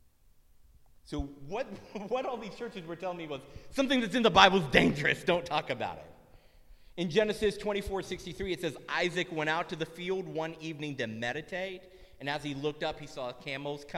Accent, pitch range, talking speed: American, 135-185 Hz, 190 wpm